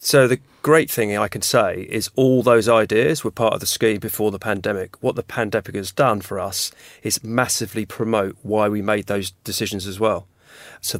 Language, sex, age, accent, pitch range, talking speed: English, male, 40-59, British, 105-125 Hz, 200 wpm